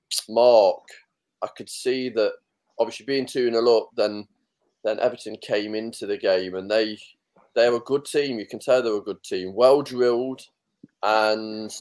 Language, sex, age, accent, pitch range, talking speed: English, male, 20-39, British, 100-130 Hz, 185 wpm